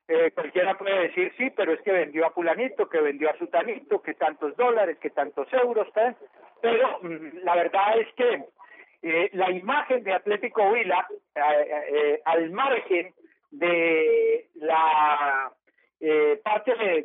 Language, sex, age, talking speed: Spanish, male, 50-69, 150 wpm